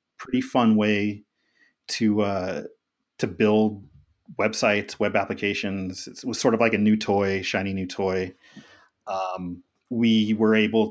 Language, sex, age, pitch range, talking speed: English, male, 30-49, 100-115 Hz, 140 wpm